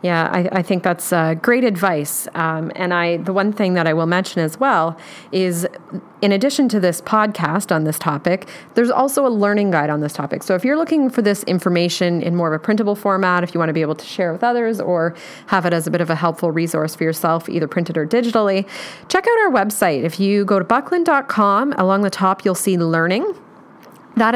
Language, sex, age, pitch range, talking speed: English, female, 30-49, 165-210 Hz, 225 wpm